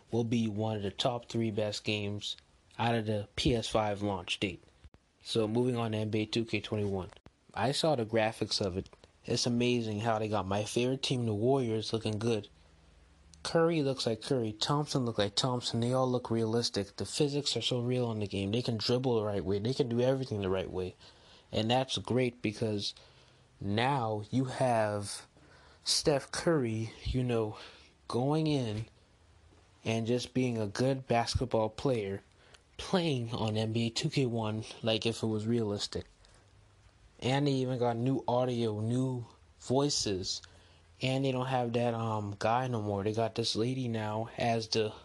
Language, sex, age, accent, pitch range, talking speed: English, male, 20-39, American, 105-125 Hz, 165 wpm